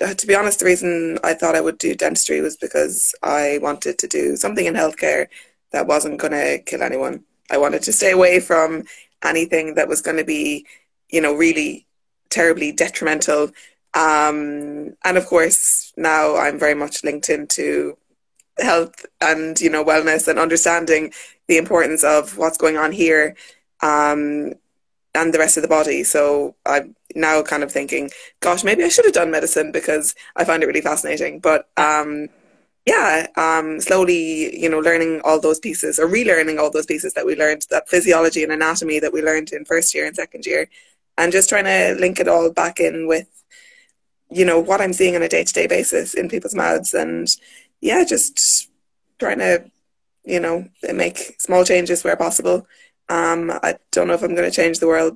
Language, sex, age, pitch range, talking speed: English, female, 20-39, 155-175 Hz, 185 wpm